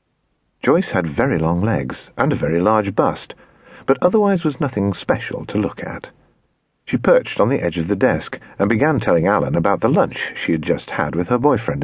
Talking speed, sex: 205 wpm, male